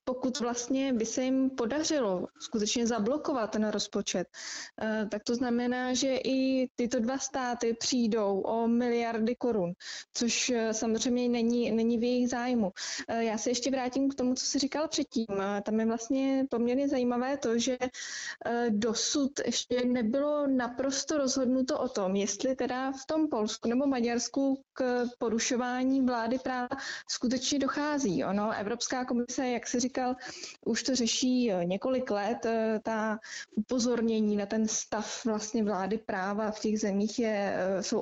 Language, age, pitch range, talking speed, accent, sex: Czech, 20-39, 220-255 Hz, 140 wpm, native, female